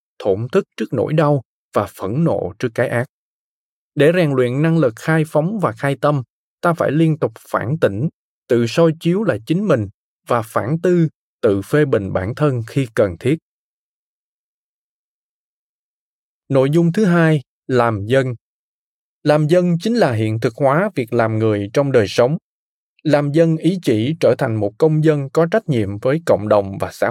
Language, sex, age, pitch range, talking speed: Vietnamese, male, 20-39, 115-165 Hz, 175 wpm